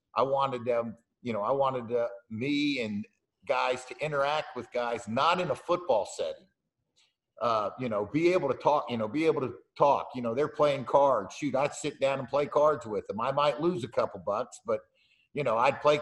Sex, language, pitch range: male, English, 120-150 Hz